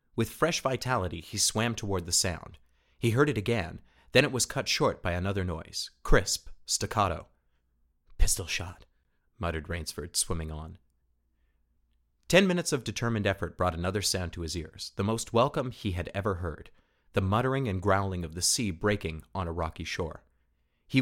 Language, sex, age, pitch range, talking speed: English, male, 30-49, 85-115 Hz, 170 wpm